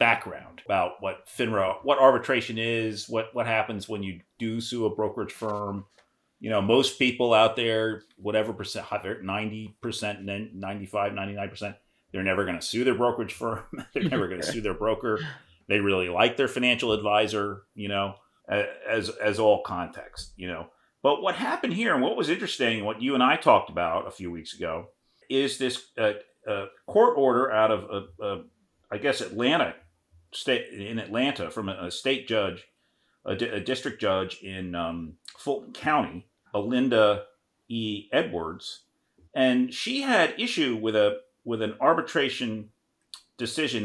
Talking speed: 160 wpm